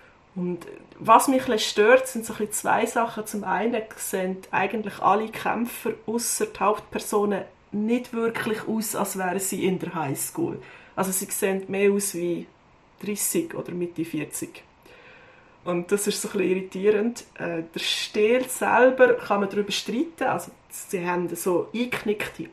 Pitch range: 185-225 Hz